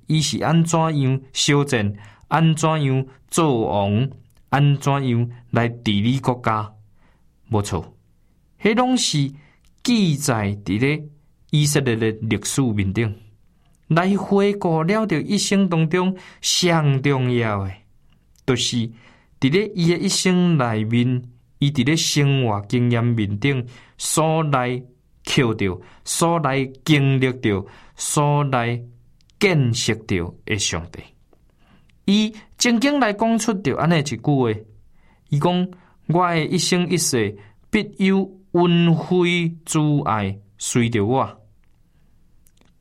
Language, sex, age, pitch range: Chinese, male, 20-39, 110-170 Hz